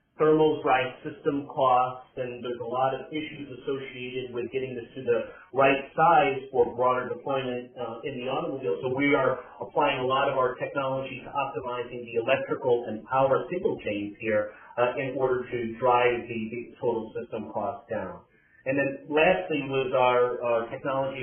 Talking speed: 170 wpm